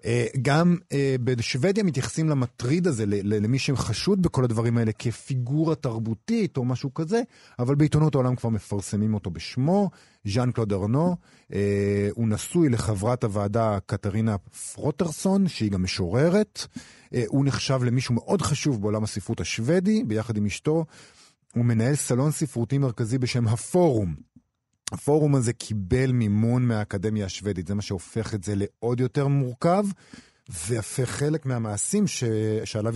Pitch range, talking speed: 105-140 Hz, 125 wpm